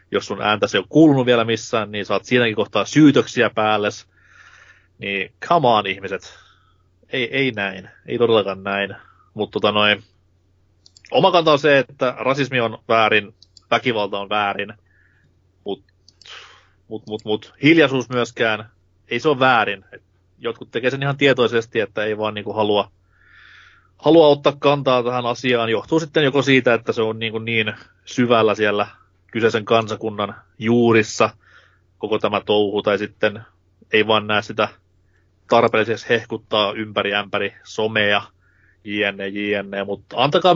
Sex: male